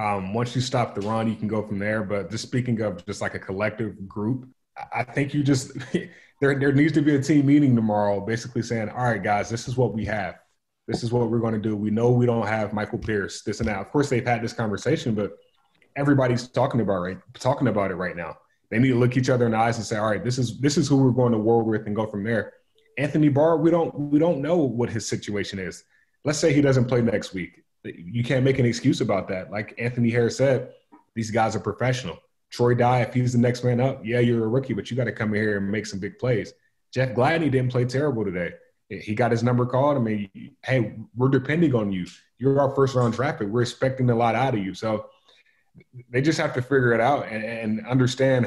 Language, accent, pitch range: English, American, 110-135 Hz